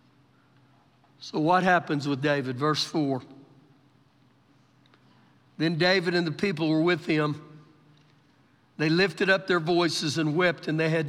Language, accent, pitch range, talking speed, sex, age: English, American, 145-230 Hz, 135 wpm, male, 60-79